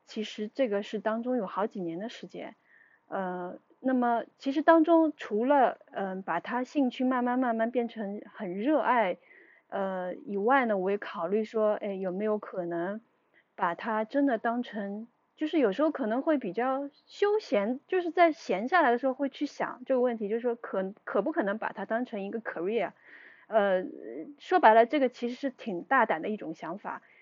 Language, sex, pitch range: English, female, 200-270 Hz